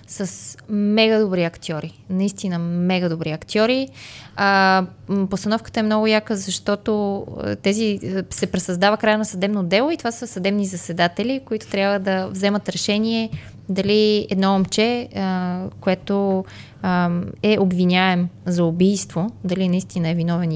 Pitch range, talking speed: 175-220 Hz, 130 wpm